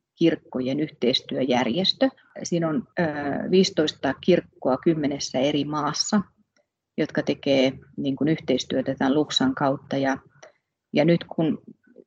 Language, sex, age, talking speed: Finnish, female, 30-49, 90 wpm